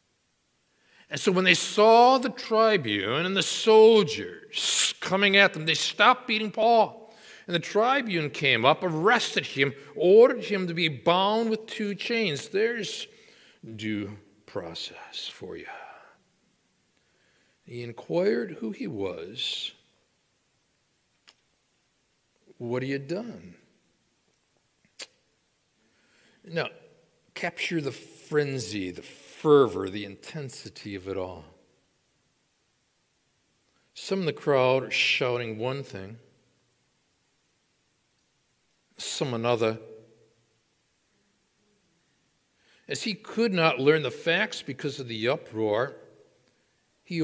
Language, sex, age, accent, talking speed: English, male, 60-79, American, 105 wpm